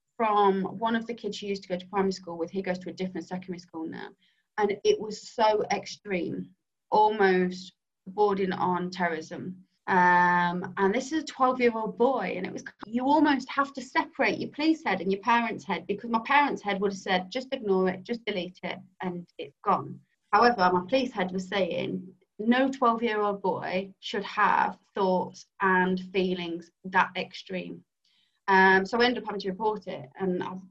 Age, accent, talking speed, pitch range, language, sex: 30-49, British, 195 wpm, 185-215 Hz, English, female